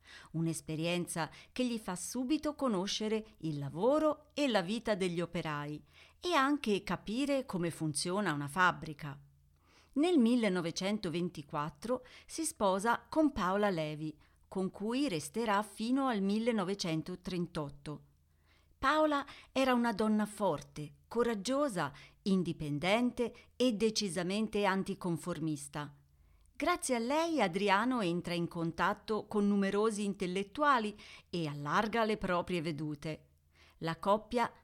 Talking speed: 105 wpm